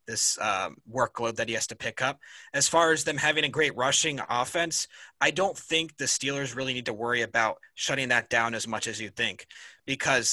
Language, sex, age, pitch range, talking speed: English, male, 30-49, 115-140 Hz, 215 wpm